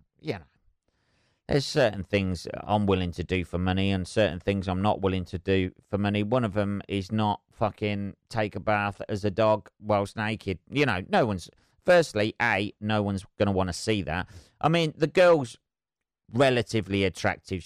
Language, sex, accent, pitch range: English, male, British, 95-125 Hz